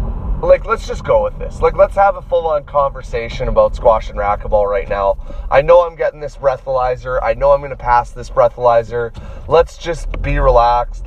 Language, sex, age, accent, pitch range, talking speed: English, male, 30-49, American, 105-145 Hz, 195 wpm